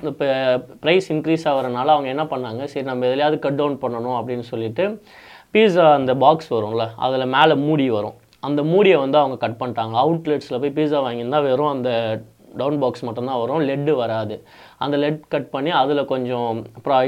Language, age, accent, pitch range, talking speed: Tamil, 20-39, native, 125-155 Hz, 170 wpm